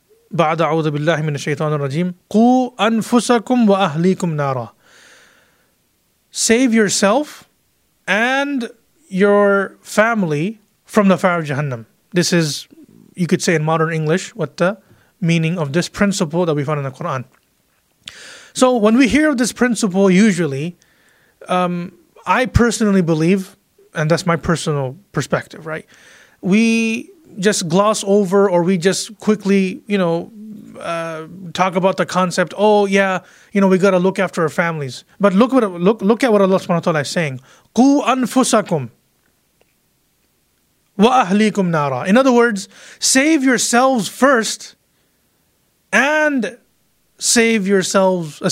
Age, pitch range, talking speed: 30-49, 170-225 Hz, 120 wpm